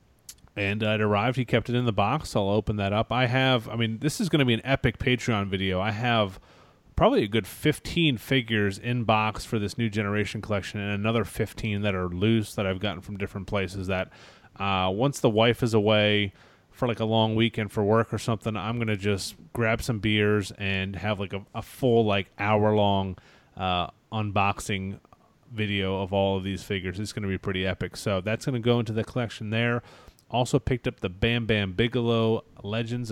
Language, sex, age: English, male, 30-49